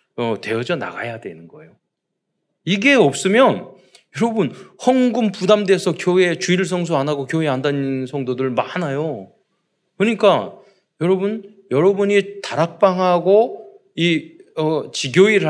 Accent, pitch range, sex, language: native, 140-200 Hz, male, Korean